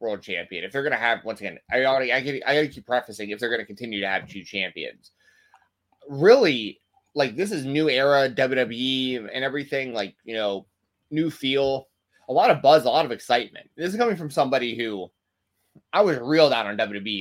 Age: 20-39